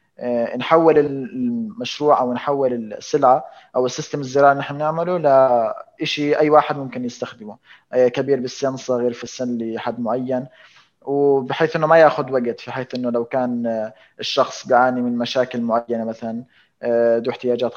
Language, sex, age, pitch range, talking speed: Arabic, male, 20-39, 120-145 Hz, 140 wpm